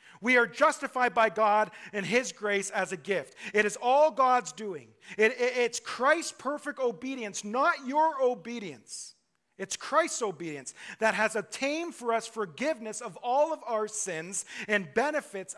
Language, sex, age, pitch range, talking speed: English, male, 40-59, 195-245 Hz, 150 wpm